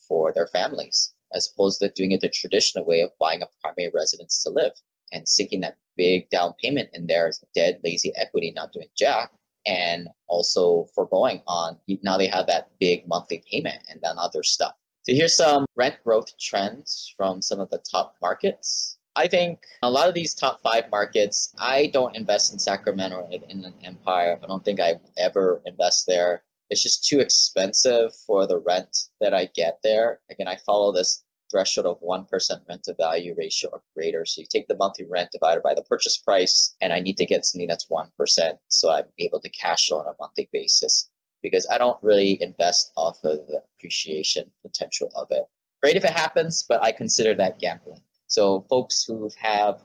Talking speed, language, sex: 195 wpm, English, male